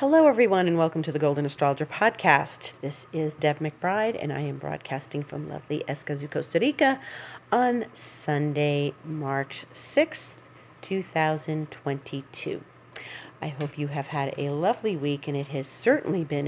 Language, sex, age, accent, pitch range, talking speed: English, female, 40-59, American, 140-180 Hz, 145 wpm